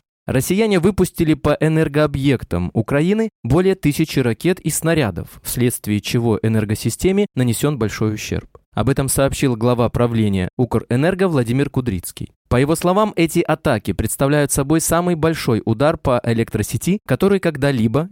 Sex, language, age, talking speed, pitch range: male, Russian, 20-39, 125 wpm, 110-160 Hz